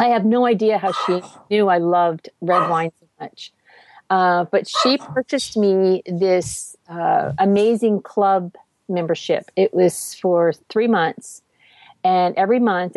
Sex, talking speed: female, 145 wpm